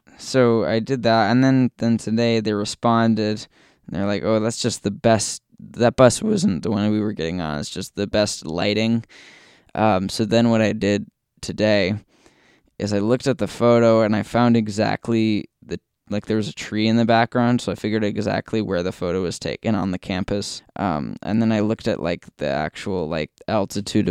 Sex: male